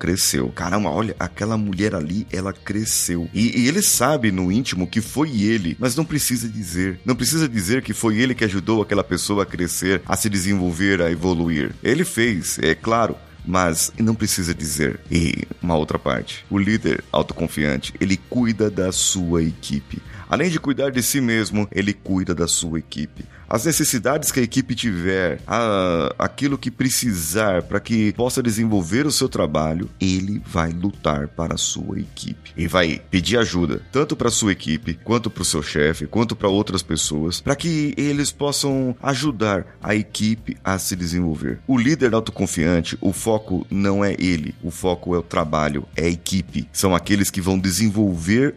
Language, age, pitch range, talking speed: Portuguese, 30-49, 85-115 Hz, 175 wpm